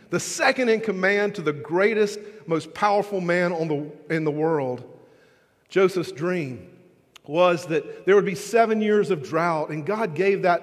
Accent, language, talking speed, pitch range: American, English, 170 wpm, 155-210 Hz